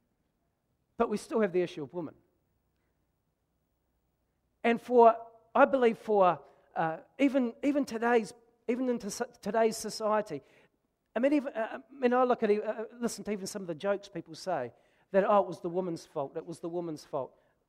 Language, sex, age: English, male, 40-59